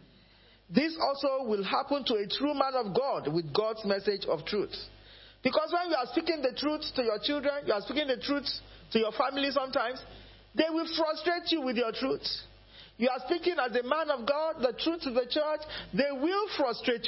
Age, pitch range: 50-69, 160-260 Hz